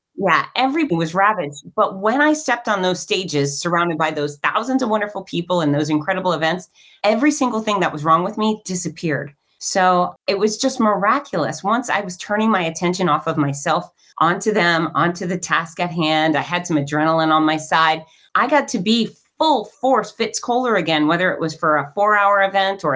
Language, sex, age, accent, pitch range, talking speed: English, female, 30-49, American, 160-210 Hz, 200 wpm